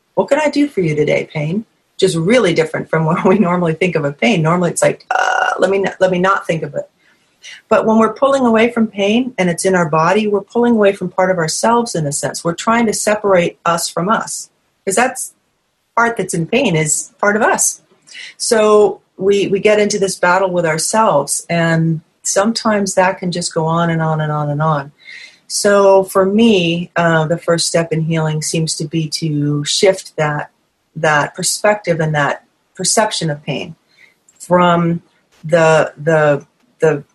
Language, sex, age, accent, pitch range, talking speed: English, female, 40-59, American, 160-205 Hz, 190 wpm